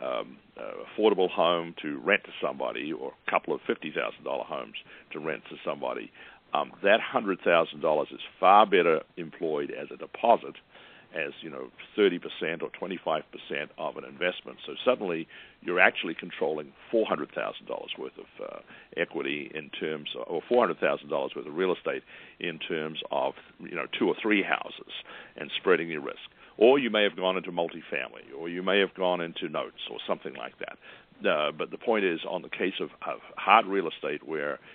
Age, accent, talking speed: 60-79, American, 195 wpm